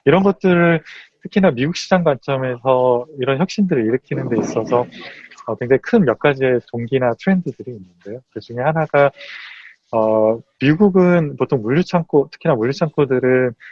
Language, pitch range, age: Korean, 120-160 Hz, 20-39